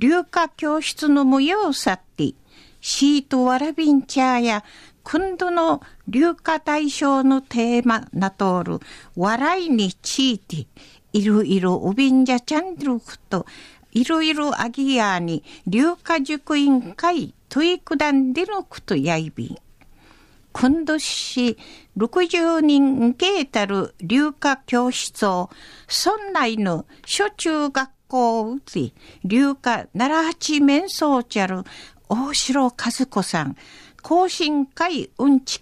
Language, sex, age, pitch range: Japanese, female, 50-69, 230-315 Hz